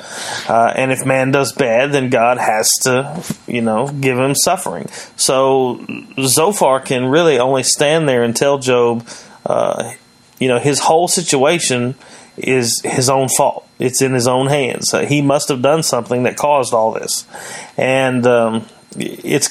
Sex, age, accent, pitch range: male, 30-49, American, 125-145 Hz